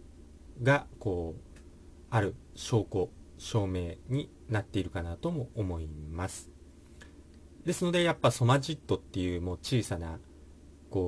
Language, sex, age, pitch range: Japanese, male, 40-59, 75-120 Hz